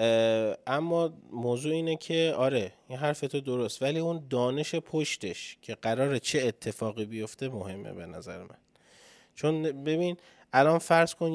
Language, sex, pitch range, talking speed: Persian, male, 110-140 Hz, 145 wpm